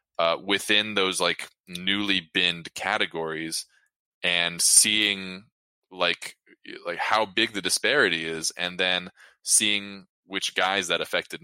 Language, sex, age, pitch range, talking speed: English, male, 20-39, 80-95 Hz, 120 wpm